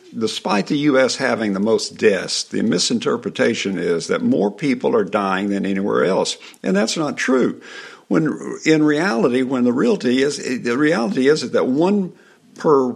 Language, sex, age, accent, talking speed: English, male, 60-79, American, 160 wpm